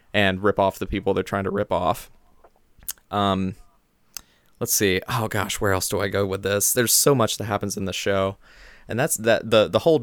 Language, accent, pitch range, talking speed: English, American, 95-110 Hz, 215 wpm